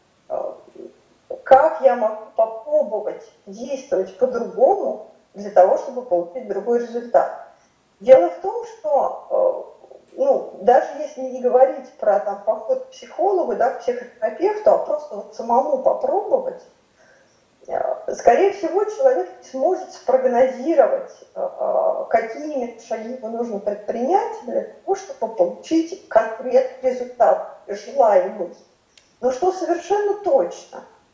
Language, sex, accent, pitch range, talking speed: Russian, female, native, 230-350 Hz, 100 wpm